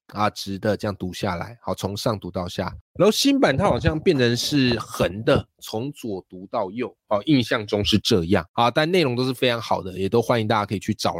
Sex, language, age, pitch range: male, Chinese, 20-39, 105-145 Hz